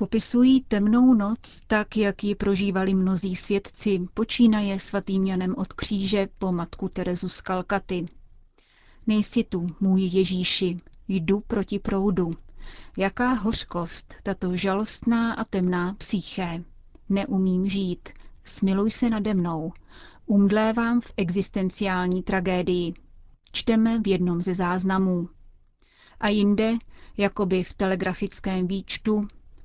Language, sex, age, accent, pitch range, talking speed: Czech, female, 30-49, native, 185-215 Hz, 110 wpm